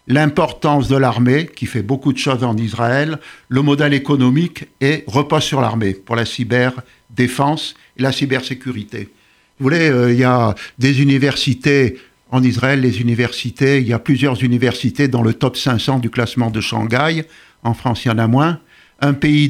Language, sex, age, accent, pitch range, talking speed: French, male, 50-69, French, 120-145 Hz, 175 wpm